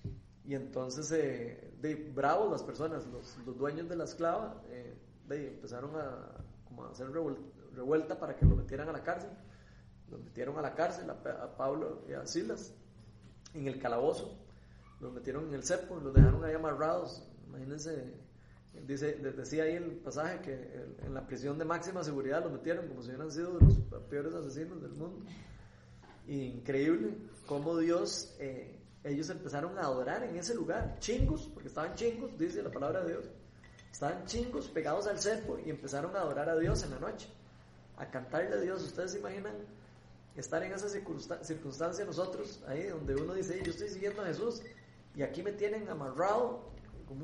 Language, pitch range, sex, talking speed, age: Spanish, 130-185 Hz, male, 175 wpm, 30-49